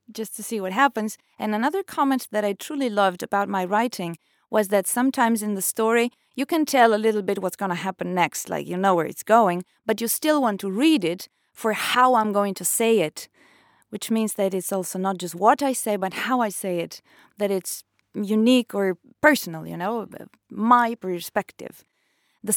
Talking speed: 205 wpm